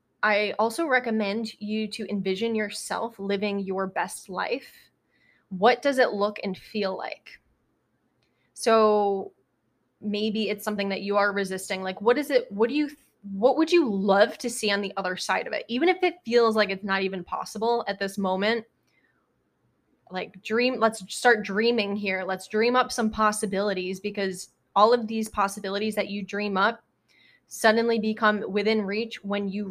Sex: female